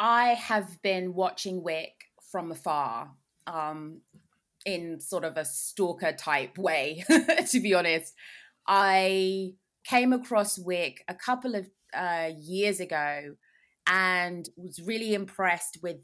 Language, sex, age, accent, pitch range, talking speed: English, female, 20-39, British, 170-195 Hz, 125 wpm